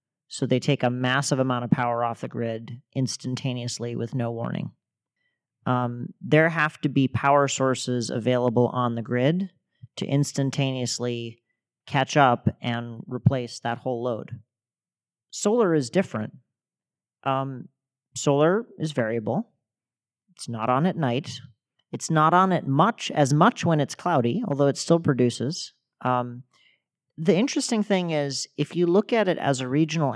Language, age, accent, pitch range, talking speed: English, 40-59, American, 125-155 Hz, 145 wpm